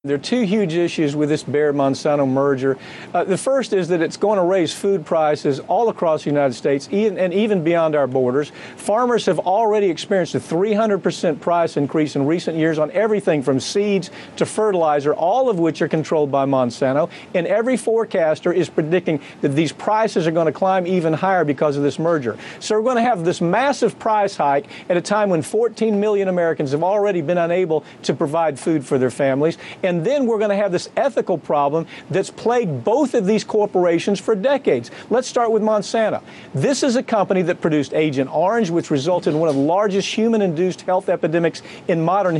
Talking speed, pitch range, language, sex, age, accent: 200 wpm, 155-210 Hz, Dutch, male, 50-69, American